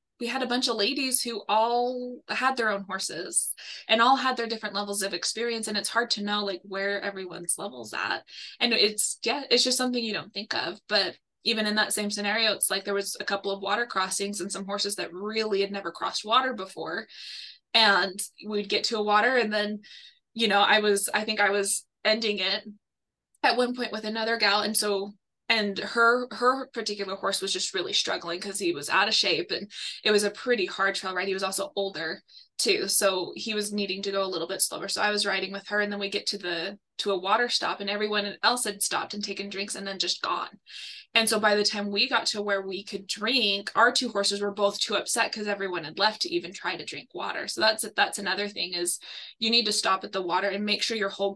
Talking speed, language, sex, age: 240 wpm, English, female, 20-39